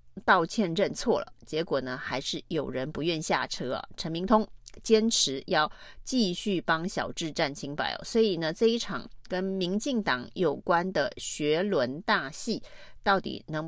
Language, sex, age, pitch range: Chinese, female, 30-49, 155-215 Hz